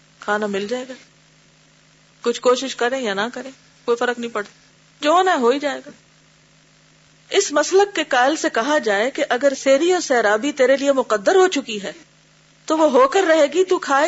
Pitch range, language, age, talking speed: 235-315 Hz, Urdu, 40-59, 190 wpm